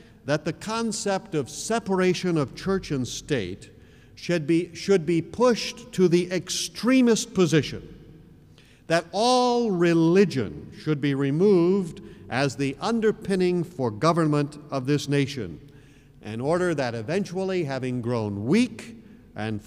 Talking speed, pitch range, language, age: 120 wpm, 115-170 Hz, English, 50-69